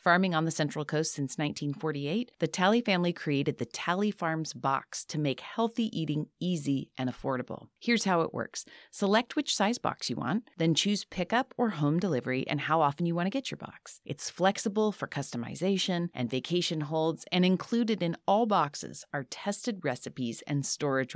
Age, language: 30-49, English